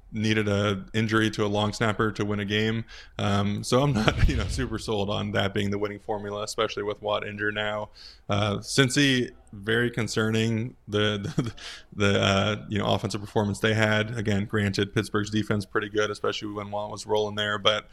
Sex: male